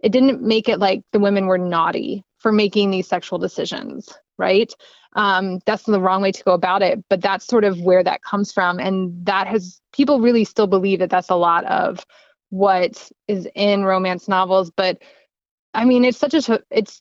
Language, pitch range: English, 190-235 Hz